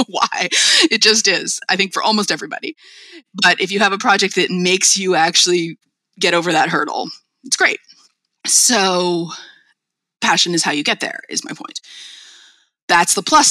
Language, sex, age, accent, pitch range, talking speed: English, female, 30-49, American, 175-260 Hz, 165 wpm